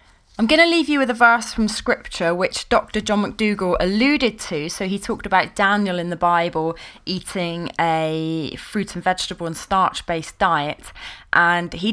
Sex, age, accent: female, 20-39, British